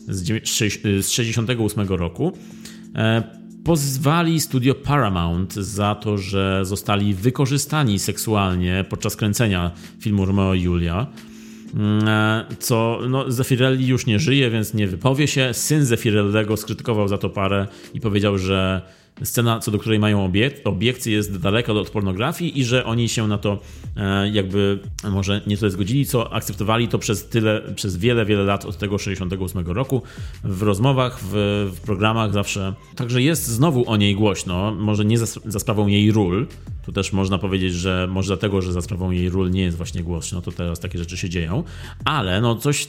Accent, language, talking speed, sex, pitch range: native, Polish, 160 wpm, male, 100-115 Hz